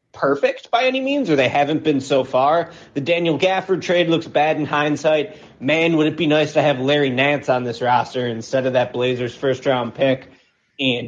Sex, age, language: male, 30-49, English